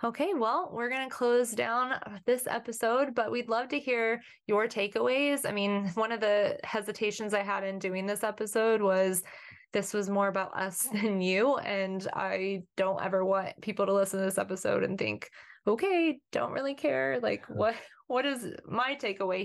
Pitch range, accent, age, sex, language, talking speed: 195-235 Hz, American, 20-39, female, English, 180 wpm